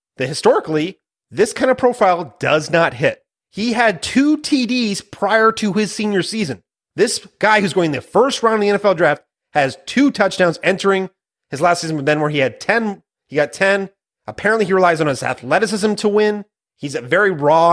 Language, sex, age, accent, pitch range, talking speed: English, male, 30-49, American, 145-185 Hz, 190 wpm